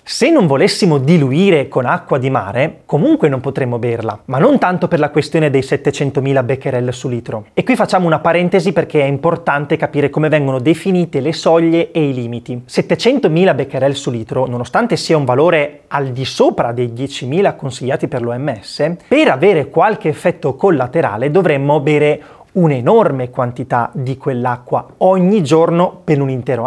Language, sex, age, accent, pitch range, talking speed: Italian, male, 30-49, native, 135-175 Hz, 160 wpm